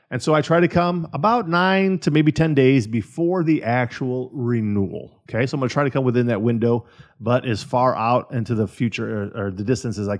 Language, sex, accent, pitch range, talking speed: English, male, American, 120-155 Hz, 235 wpm